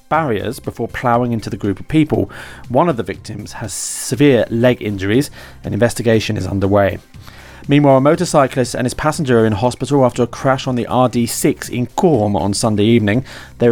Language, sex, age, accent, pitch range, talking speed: English, male, 30-49, British, 110-145 Hz, 180 wpm